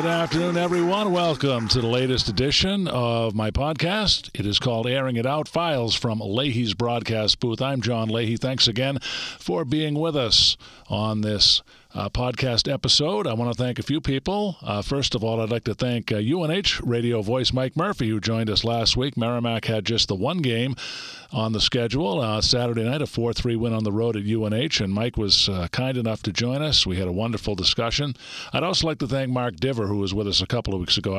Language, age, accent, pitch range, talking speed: English, 50-69, American, 110-135 Hz, 215 wpm